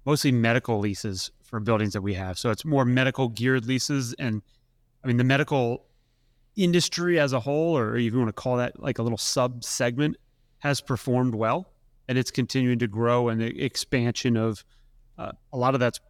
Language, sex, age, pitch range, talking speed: English, male, 30-49, 115-130 Hz, 190 wpm